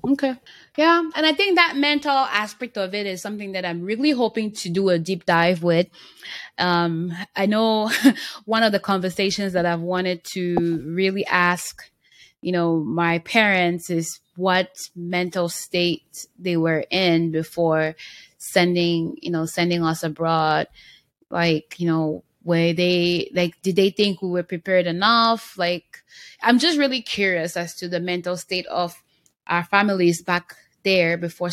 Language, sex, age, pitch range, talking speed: English, female, 10-29, 170-210 Hz, 155 wpm